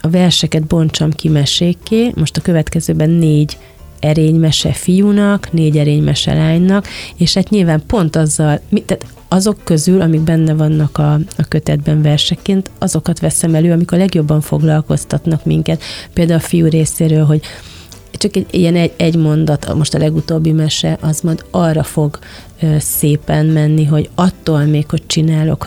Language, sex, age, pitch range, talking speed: Hungarian, female, 30-49, 150-170 Hz, 145 wpm